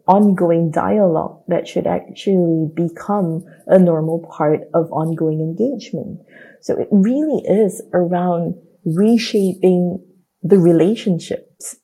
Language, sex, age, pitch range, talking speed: English, female, 30-49, 165-205 Hz, 100 wpm